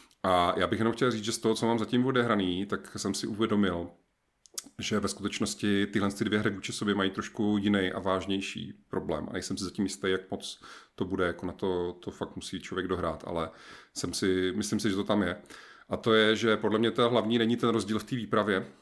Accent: native